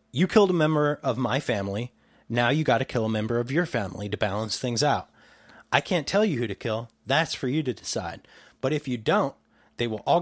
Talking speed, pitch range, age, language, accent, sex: 235 wpm, 110-150 Hz, 30-49, English, American, male